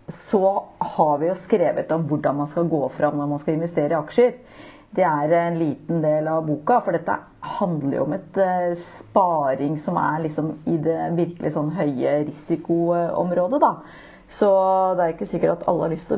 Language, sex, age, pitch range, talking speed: English, female, 40-59, 155-205 Hz, 170 wpm